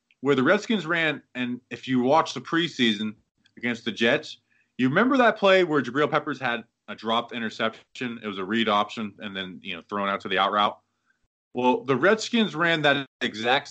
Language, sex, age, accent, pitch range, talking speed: English, male, 20-39, American, 110-150 Hz, 195 wpm